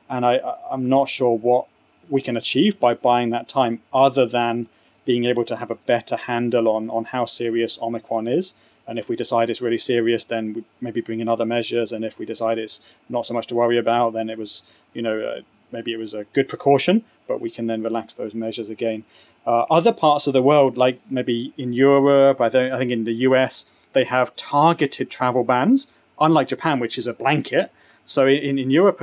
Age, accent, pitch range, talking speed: 30-49, British, 115-135 Hz, 215 wpm